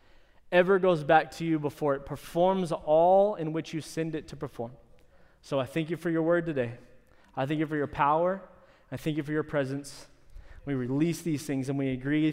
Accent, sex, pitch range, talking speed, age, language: American, male, 150-185 Hz, 210 wpm, 20-39, English